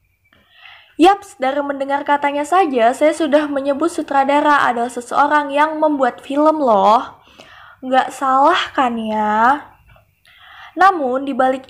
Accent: native